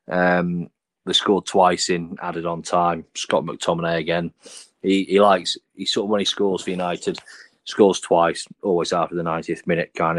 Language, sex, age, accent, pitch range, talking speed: English, male, 30-49, British, 85-100 Hz, 175 wpm